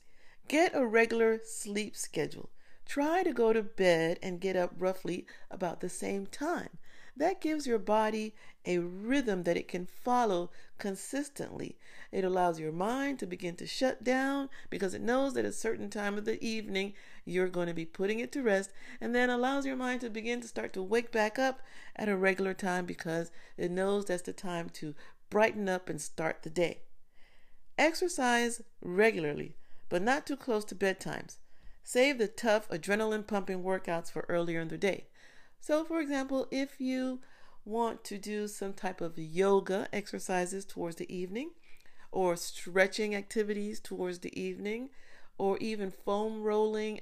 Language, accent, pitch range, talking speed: English, American, 185-230 Hz, 165 wpm